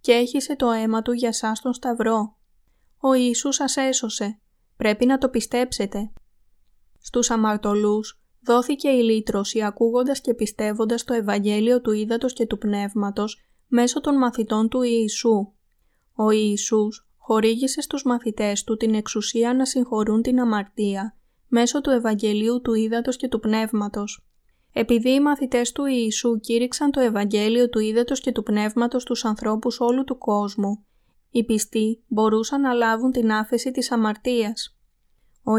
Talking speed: 140 wpm